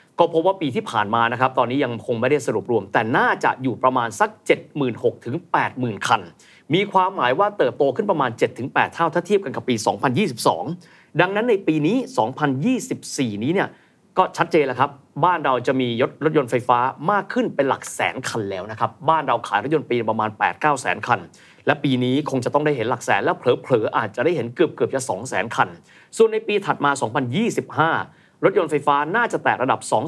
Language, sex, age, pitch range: Thai, male, 30-49, 120-175 Hz